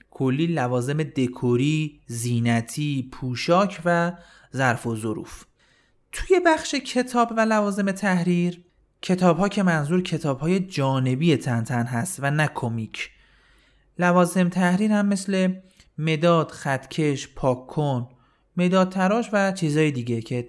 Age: 30-49